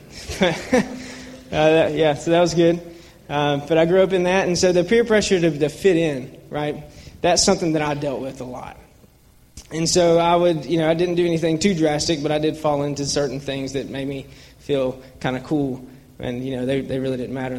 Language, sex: English, male